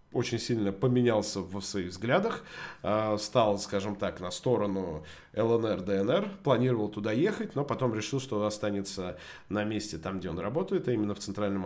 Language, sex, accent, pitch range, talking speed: Russian, male, native, 100-125 Hz, 160 wpm